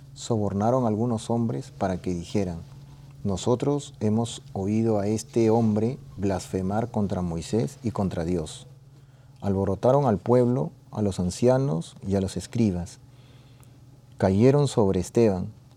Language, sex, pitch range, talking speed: Spanish, male, 100-130 Hz, 120 wpm